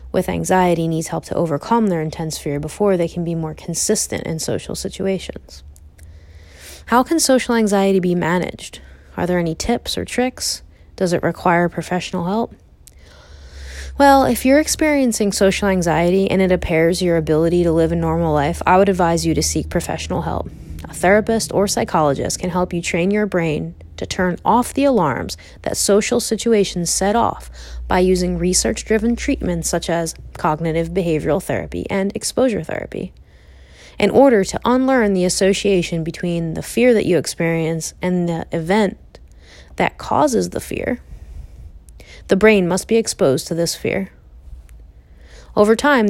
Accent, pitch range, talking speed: American, 155-200 Hz, 155 wpm